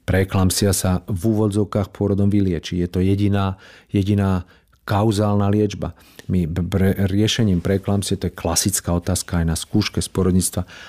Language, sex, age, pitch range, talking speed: Slovak, male, 50-69, 90-105 Hz, 130 wpm